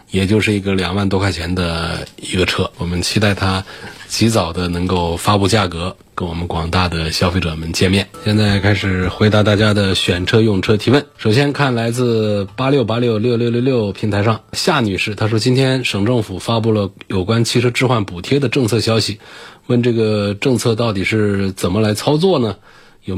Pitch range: 95-115 Hz